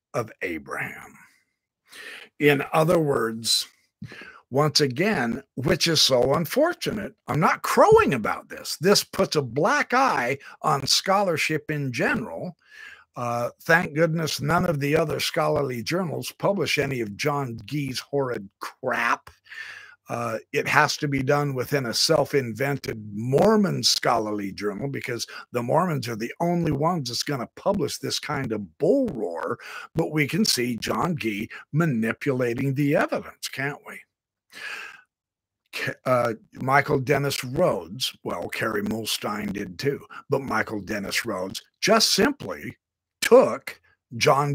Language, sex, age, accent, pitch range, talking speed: English, male, 50-69, American, 120-165 Hz, 130 wpm